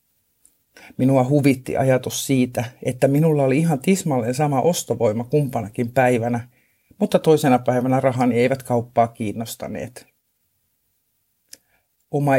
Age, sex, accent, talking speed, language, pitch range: 50-69, male, native, 100 wpm, Finnish, 120-150 Hz